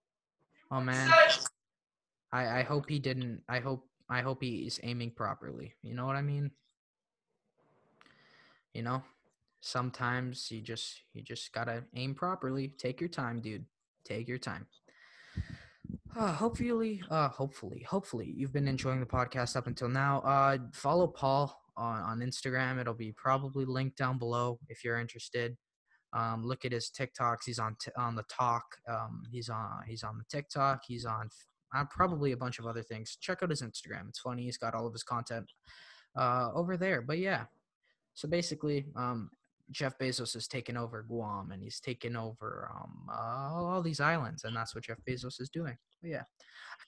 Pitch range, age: 115-140 Hz, 20-39